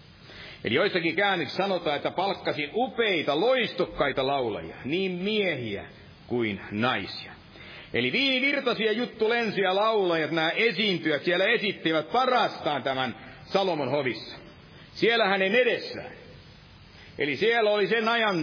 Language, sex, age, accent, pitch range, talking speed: Finnish, male, 60-79, native, 165-225 Hz, 105 wpm